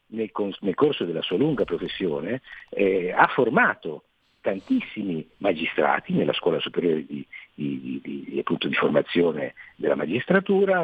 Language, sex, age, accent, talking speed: Italian, male, 50-69, native, 120 wpm